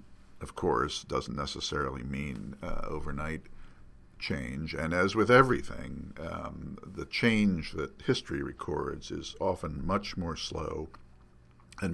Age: 60-79